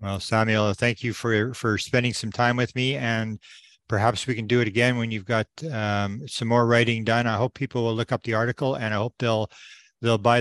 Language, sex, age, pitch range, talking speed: English, male, 50-69, 105-120 Hz, 230 wpm